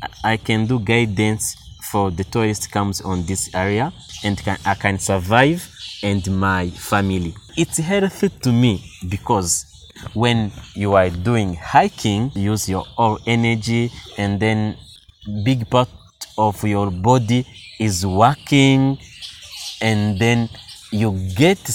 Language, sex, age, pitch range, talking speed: English, male, 30-49, 95-115 Hz, 125 wpm